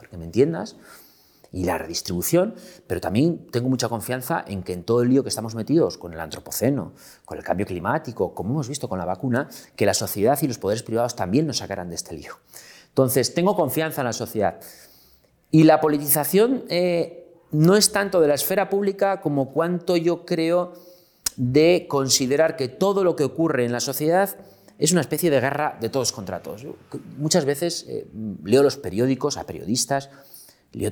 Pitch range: 105-155 Hz